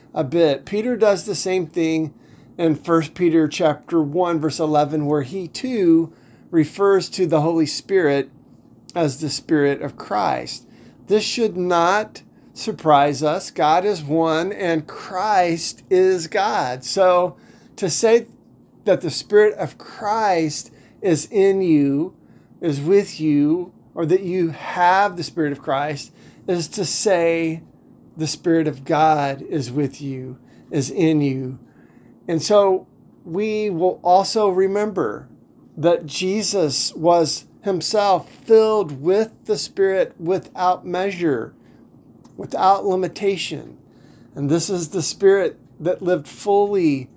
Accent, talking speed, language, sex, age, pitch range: American, 125 wpm, English, male, 40-59, 155-195 Hz